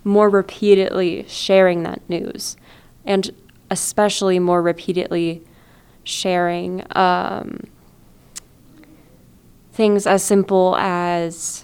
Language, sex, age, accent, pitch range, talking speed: English, female, 10-29, American, 170-195 Hz, 75 wpm